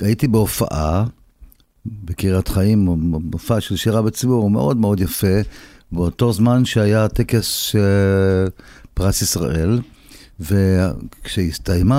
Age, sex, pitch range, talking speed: 50-69, male, 95-125 Hz, 100 wpm